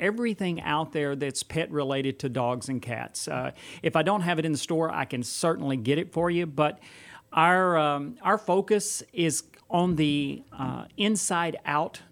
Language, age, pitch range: English, 40-59, 135-160 Hz